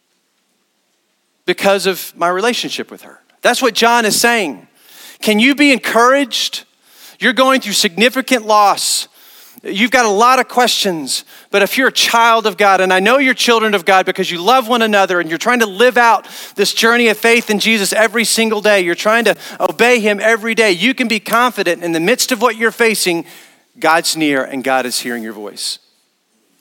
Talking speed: 195 wpm